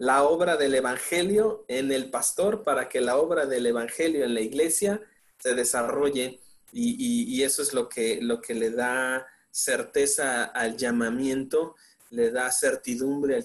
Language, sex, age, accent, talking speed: Spanish, male, 30-49, Mexican, 150 wpm